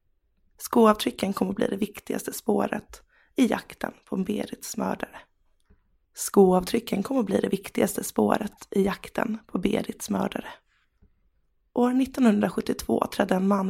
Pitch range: 200-230 Hz